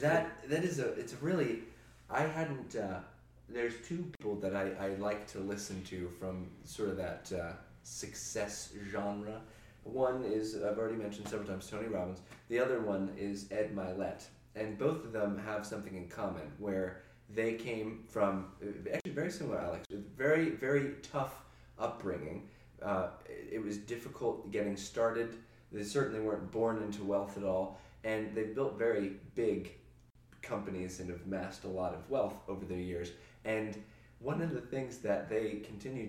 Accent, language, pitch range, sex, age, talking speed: American, English, 95-115 Hz, male, 20-39, 165 wpm